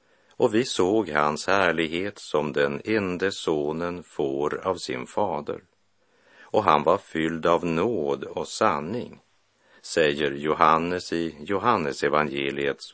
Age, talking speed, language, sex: 50-69, 120 wpm, Swedish, male